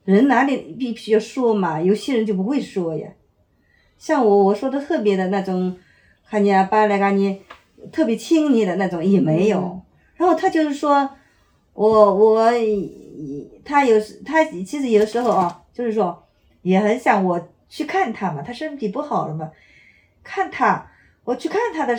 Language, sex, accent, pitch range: Chinese, female, native, 165-220 Hz